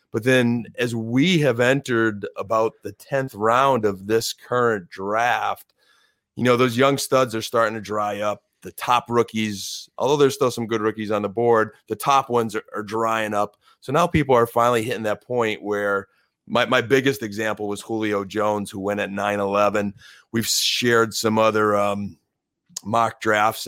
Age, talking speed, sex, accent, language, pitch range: 30-49, 175 wpm, male, American, English, 105-125 Hz